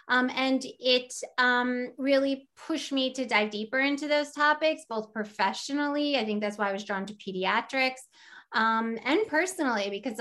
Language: English